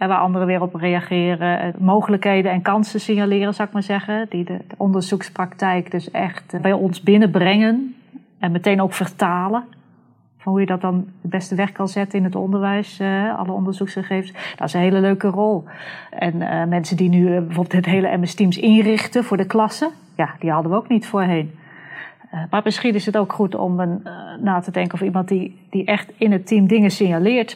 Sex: female